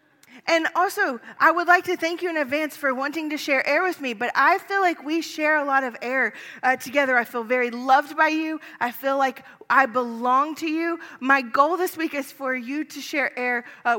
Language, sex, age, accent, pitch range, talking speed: English, female, 30-49, American, 225-300 Hz, 225 wpm